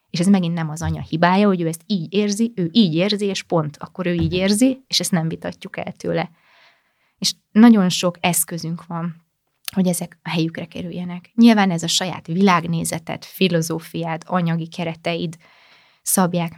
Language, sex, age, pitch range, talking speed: Hungarian, female, 20-39, 170-195 Hz, 165 wpm